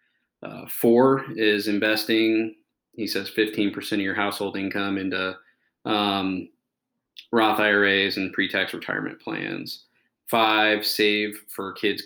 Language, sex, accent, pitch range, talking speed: English, male, American, 100-115 Hz, 115 wpm